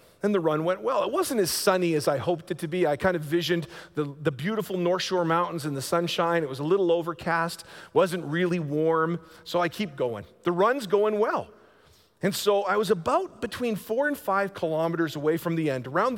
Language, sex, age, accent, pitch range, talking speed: English, male, 40-59, American, 150-210 Hz, 220 wpm